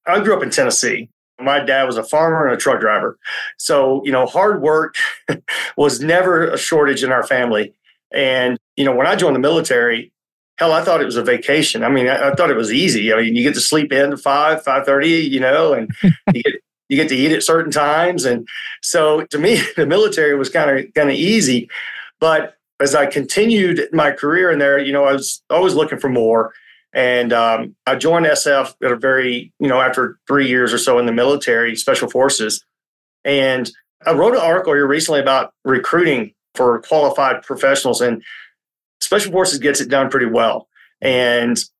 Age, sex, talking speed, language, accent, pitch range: 40-59, male, 200 wpm, English, American, 125-155 Hz